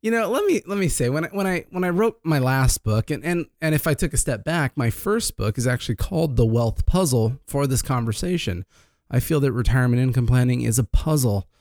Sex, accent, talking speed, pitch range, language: male, American, 245 wpm, 110-145 Hz, English